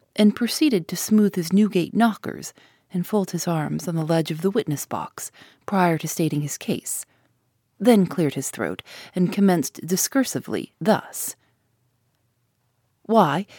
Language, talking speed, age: English, 135 wpm, 40-59